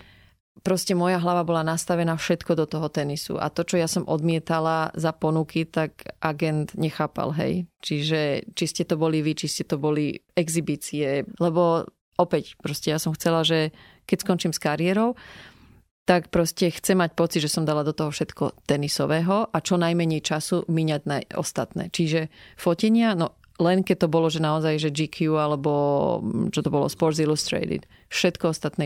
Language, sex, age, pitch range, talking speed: Slovak, female, 30-49, 155-180 Hz, 170 wpm